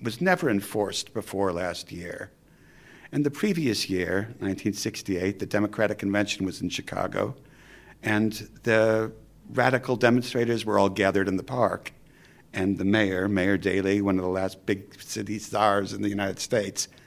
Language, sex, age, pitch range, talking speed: English, male, 60-79, 95-125 Hz, 150 wpm